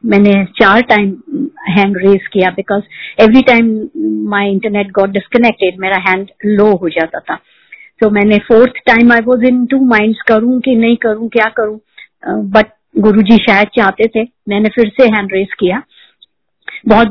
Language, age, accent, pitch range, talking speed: Hindi, 50-69, native, 205-240 Hz, 170 wpm